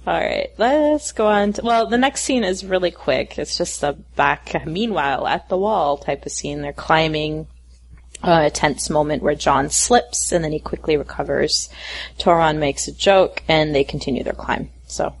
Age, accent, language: 30-49, American, English